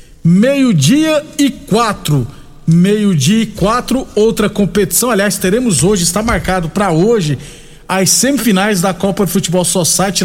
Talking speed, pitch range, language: 130 wpm, 165-210 Hz, Portuguese